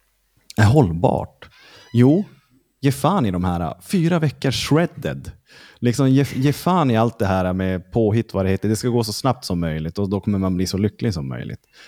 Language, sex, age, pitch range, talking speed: Swedish, male, 30-49, 95-130 Hz, 180 wpm